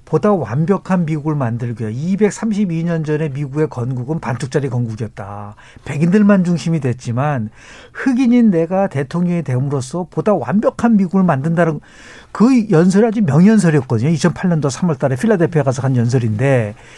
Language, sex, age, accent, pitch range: Korean, male, 60-79, native, 145-215 Hz